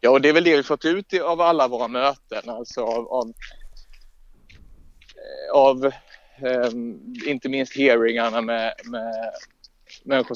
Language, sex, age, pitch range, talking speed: Swedish, male, 30-49, 120-155 Hz, 145 wpm